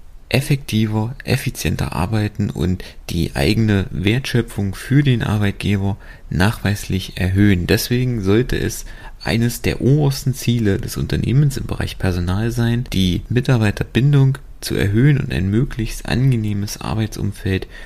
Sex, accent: male, German